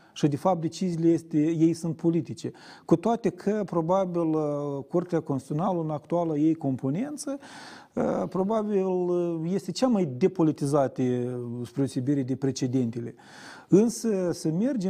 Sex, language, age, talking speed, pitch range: male, Romanian, 40-59, 120 wpm, 135-195 Hz